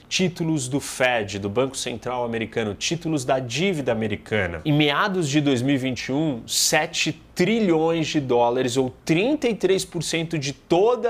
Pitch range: 115-150 Hz